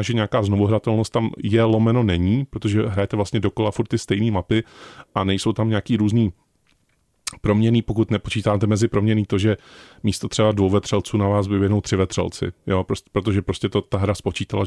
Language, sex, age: Czech, male, 30-49